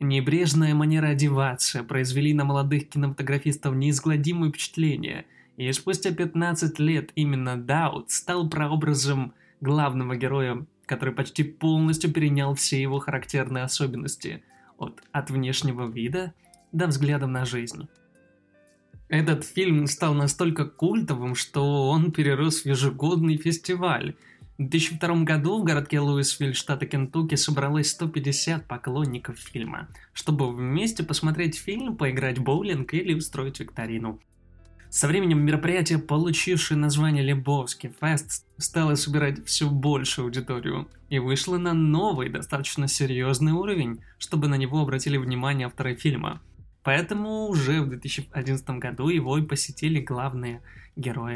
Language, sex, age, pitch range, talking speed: Russian, male, 20-39, 130-160 Hz, 120 wpm